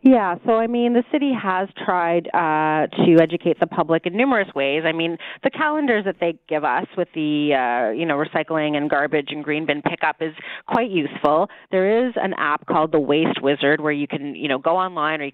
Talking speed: 220 wpm